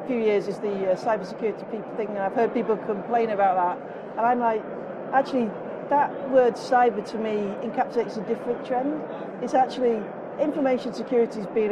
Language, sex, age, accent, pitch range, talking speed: English, female, 40-59, British, 200-240 Hz, 170 wpm